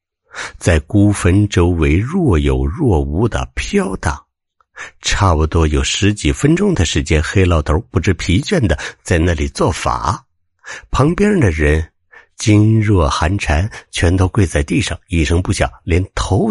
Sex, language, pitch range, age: male, Chinese, 75-100 Hz, 60-79